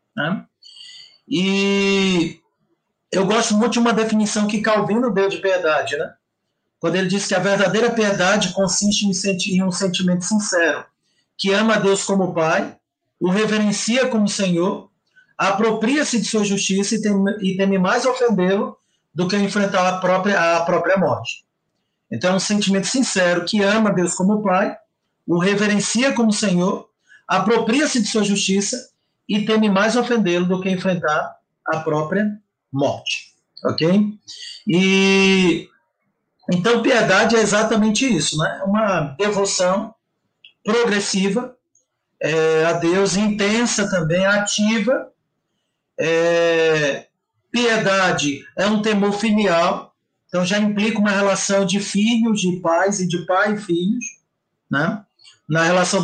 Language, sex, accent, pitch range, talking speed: Portuguese, male, Brazilian, 180-215 Hz, 130 wpm